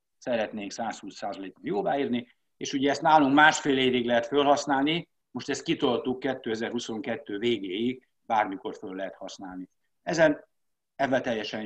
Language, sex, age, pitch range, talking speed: Hungarian, male, 60-79, 115-145 Hz, 125 wpm